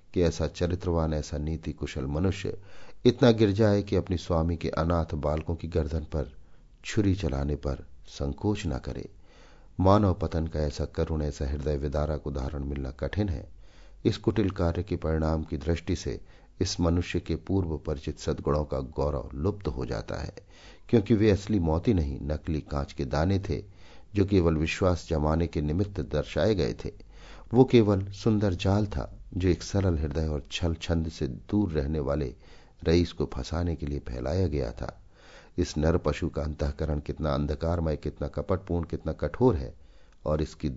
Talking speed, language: 165 wpm, Hindi